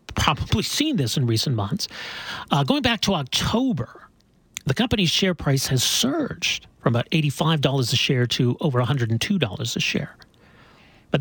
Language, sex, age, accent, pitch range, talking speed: English, male, 40-59, American, 130-185 Hz, 150 wpm